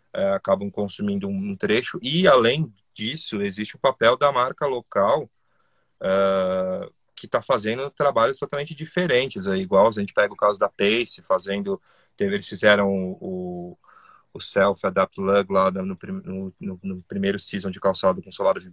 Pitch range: 100-135 Hz